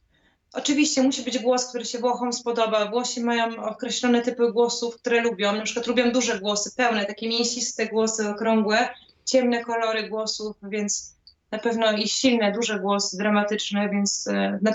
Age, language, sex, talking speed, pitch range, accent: 20-39, Polish, female, 155 wpm, 225-260 Hz, native